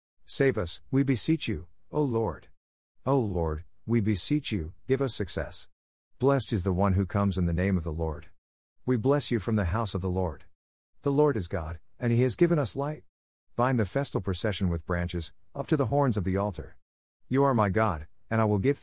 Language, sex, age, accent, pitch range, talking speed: English, male, 50-69, American, 85-120 Hz, 215 wpm